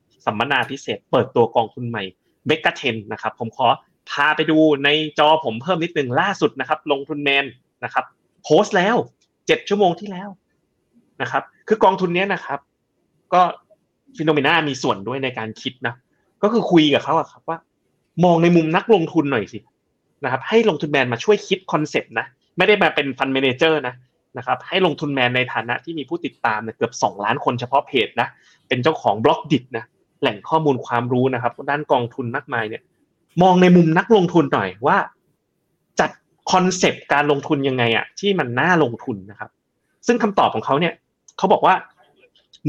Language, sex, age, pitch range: Thai, male, 30-49, 125-180 Hz